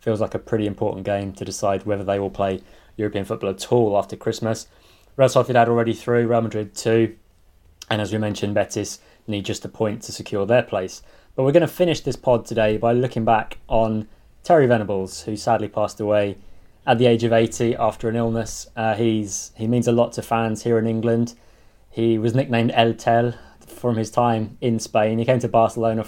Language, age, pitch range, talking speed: English, 20-39, 100-120 Hz, 205 wpm